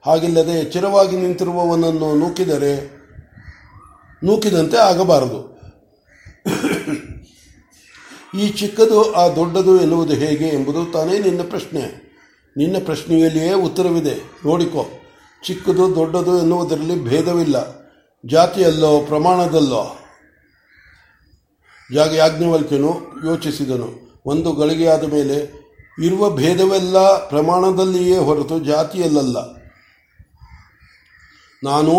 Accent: native